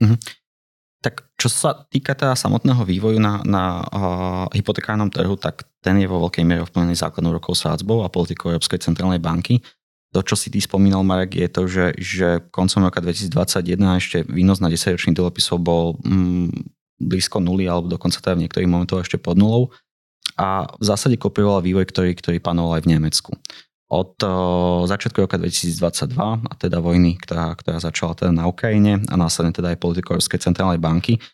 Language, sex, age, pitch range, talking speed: Slovak, male, 20-39, 85-100 Hz, 170 wpm